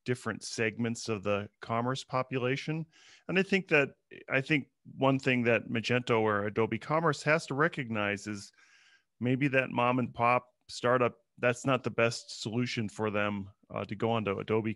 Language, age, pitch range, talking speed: English, 40-59, 105-130 Hz, 165 wpm